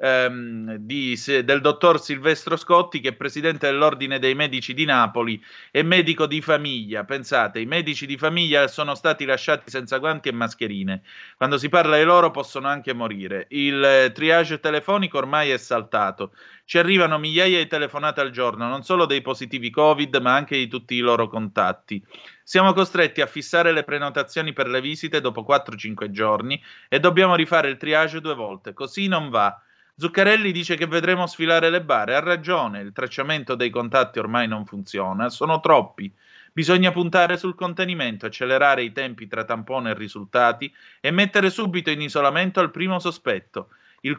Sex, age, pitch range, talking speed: male, 30-49, 125-170 Hz, 165 wpm